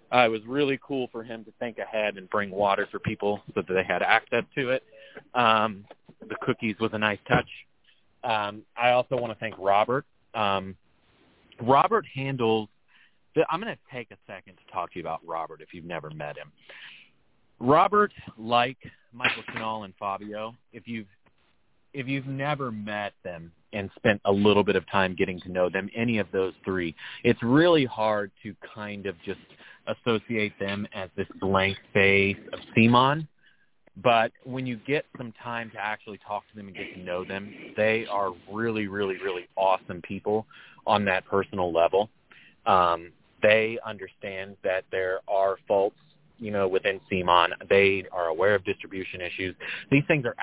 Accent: American